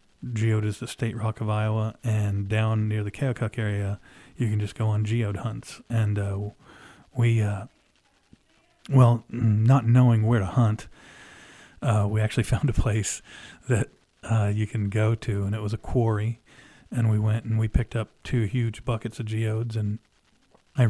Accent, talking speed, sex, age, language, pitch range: American, 175 wpm, male, 40-59, English, 105-120 Hz